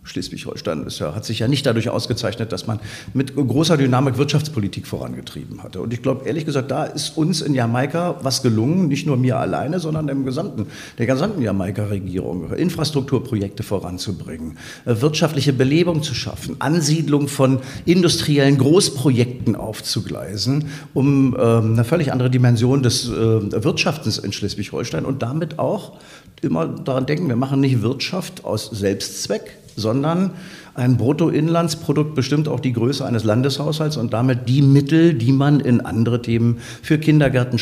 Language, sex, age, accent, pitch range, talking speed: German, male, 50-69, German, 110-145 Hz, 150 wpm